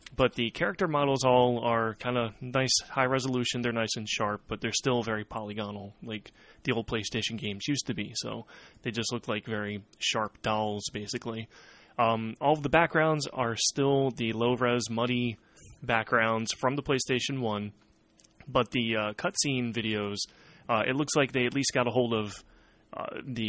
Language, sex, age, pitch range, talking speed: English, male, 20-39, 110-130 Hz, 180 wpm